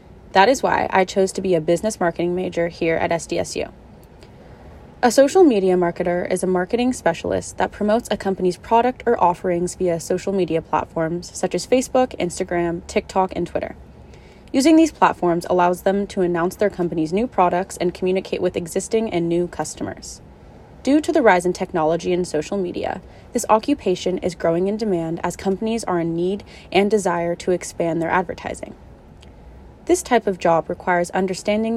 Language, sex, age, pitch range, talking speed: English, female, 20-39, 175-220 Hz, 170 wpm